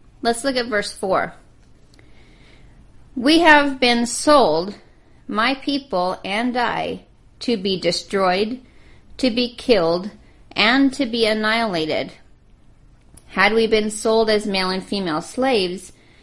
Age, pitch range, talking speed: 40-59, 185-250 Hz, 120 wpm